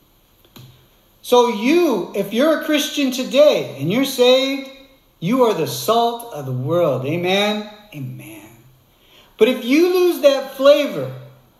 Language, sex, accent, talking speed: English, male, American, 130 wpm